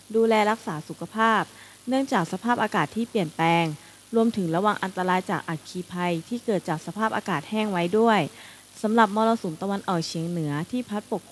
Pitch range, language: 165-210 Hz, Thai